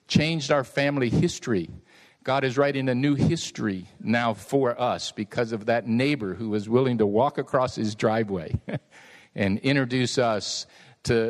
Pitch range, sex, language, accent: 130-170 Hz, male, English, American